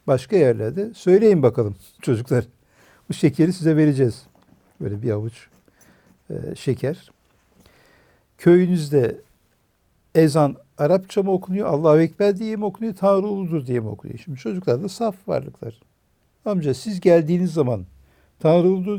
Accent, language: native, Turkish